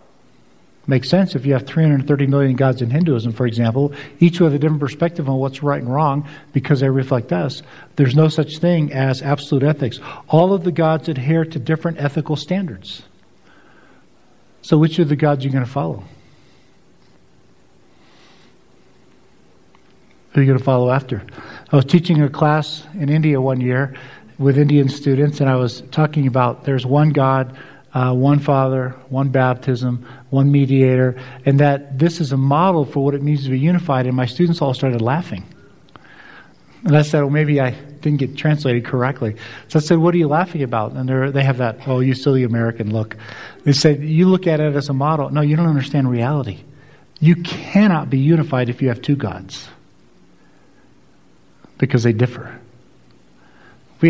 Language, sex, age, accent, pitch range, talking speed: English, male, 50-69, American, 130-150 Hz, 180 wpm